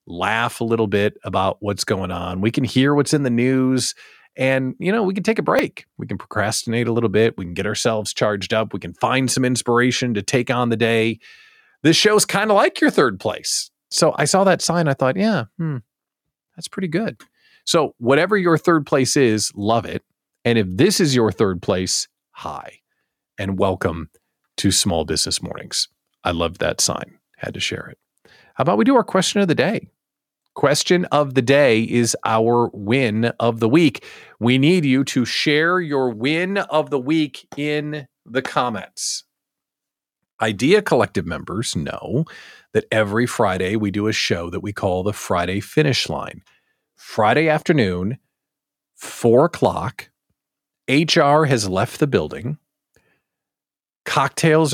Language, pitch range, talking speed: English, 110-155 Hz, 170 wpm